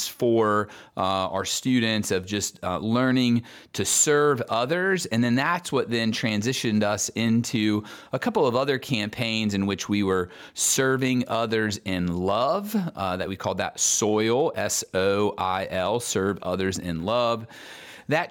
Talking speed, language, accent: 145 wpm, English, American